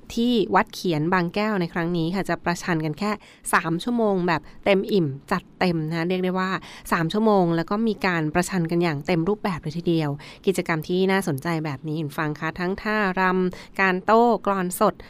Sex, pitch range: female, 165-195 Hz